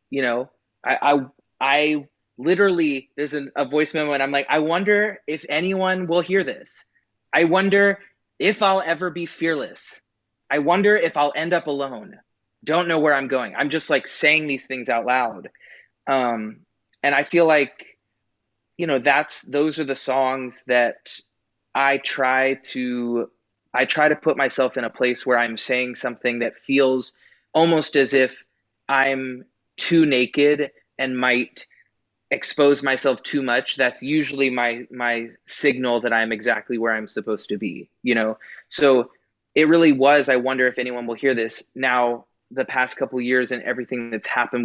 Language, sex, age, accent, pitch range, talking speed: English, male, 20-39, American, 120-150 Hz, 170 wpm